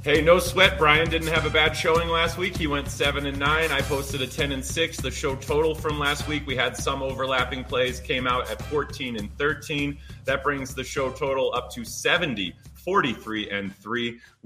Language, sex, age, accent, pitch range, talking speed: English, male, 30-49, American, 125-165 Hz, 195 wpm